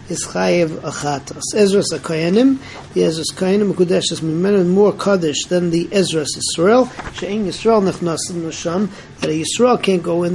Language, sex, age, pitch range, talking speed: English, male, 40-59, 165-195 Hz, 150 wpm